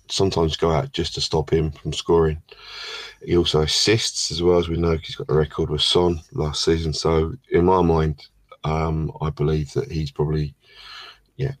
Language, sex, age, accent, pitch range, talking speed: English, male, 20-39, British, 75-85 Hz, 185 wpm